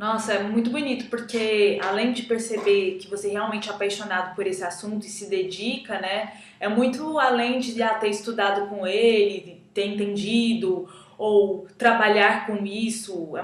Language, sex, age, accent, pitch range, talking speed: Portuguese, female, 20-39, Brazilian, 200-235 Hz, 160 wpm